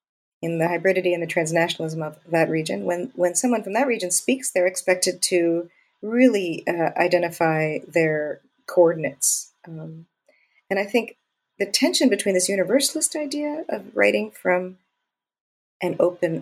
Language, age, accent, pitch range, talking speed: English, 40-59, American, 160-195 Hz, 145 wpm